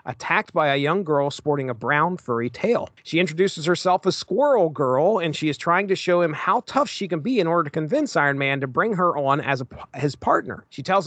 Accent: American